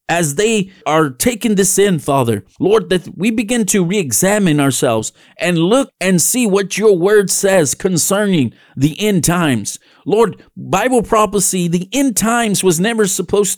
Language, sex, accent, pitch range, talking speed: English, male, American, 140-200 Hz, 155 wpm